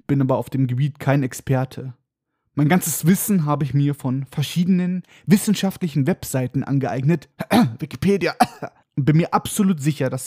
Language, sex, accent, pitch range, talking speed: German, male, German, 135-175 Hz, 140 wpm